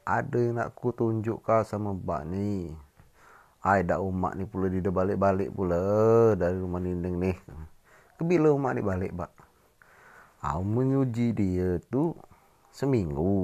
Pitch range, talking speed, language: 85-100 Hz, 135 wpm, Malay